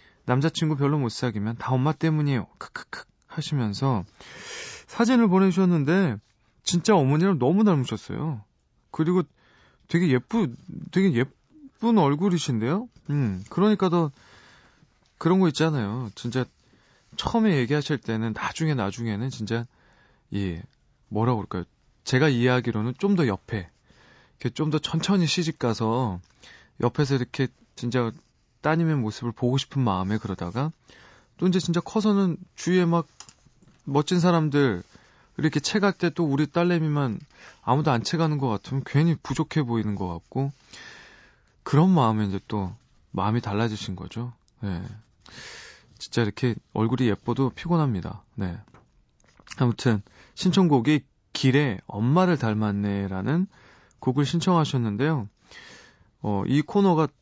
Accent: native